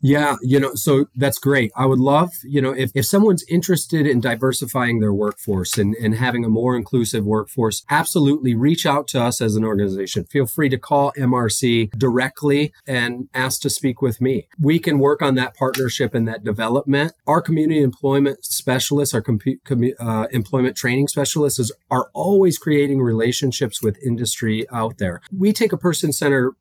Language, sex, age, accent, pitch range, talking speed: English, male, 30-49, American, 115-145 Hz, 180 wpm